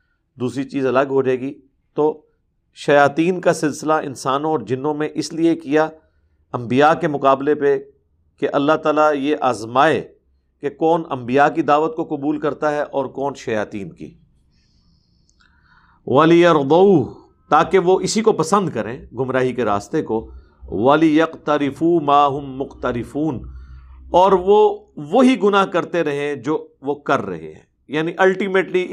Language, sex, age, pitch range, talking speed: Urdu, male, 50-69, 125-170 Hz, 140 wpm